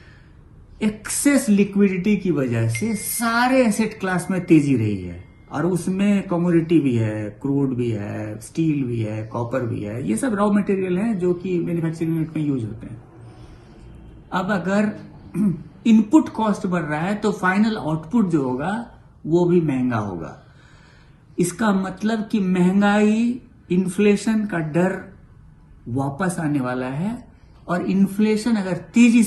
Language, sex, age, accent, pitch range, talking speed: Hindi, male, 60-79, native, 140-205 Hz, 140 wpm